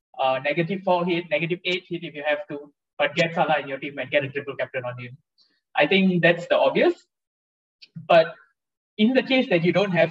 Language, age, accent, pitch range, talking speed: English, 20-39, Indian, 145-190 Hz, 220 wpm